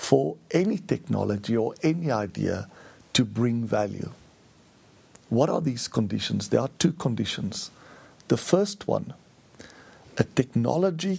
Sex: male